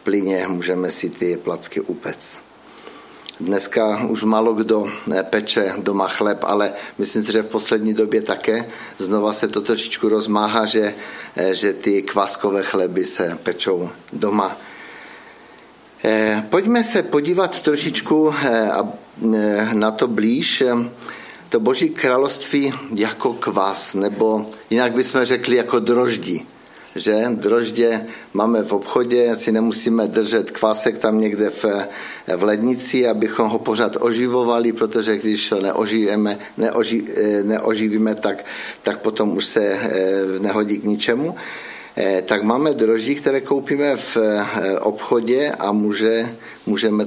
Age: 50-69